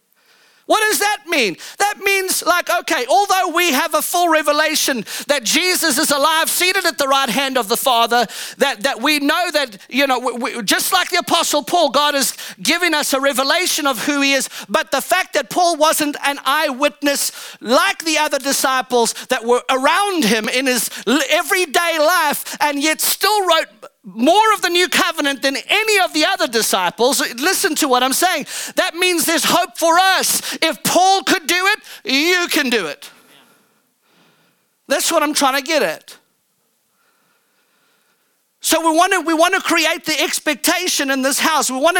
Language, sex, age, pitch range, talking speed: English, male, 40-59, 280-350 Hz, 180 wpm